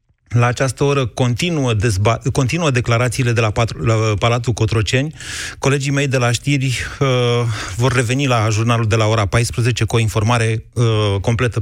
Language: Romanian